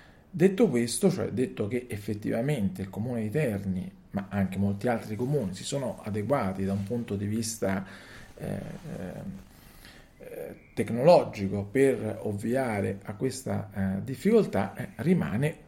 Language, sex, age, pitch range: Italian, male, 40-59, 100-130 Hz